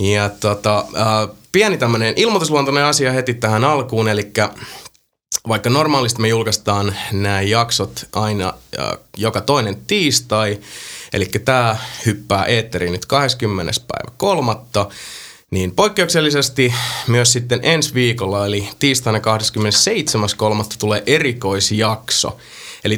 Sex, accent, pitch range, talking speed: male, native, 105-125 Hz, 105 wpm